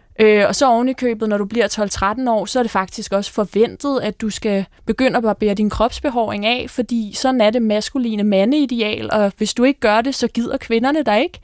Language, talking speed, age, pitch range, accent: Danish, 220 wpm, 20-39, 210-265 Hz, native